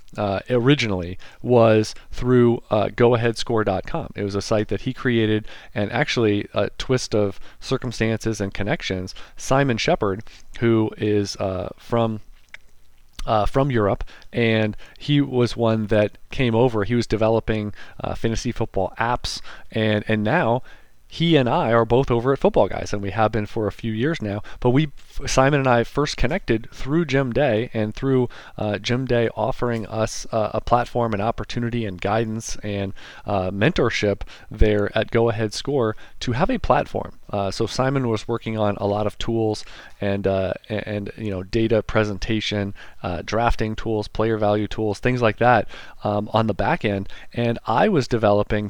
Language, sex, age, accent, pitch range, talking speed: English, male, 40-59, American, 105-120 Hz, 170 wpm